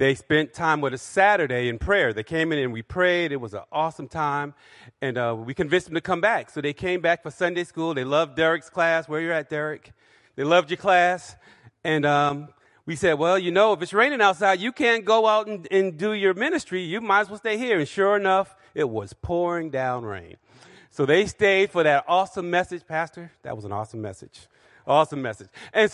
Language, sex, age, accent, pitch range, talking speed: English, male, 40-59, American, 145-205 Hz, 225 wpm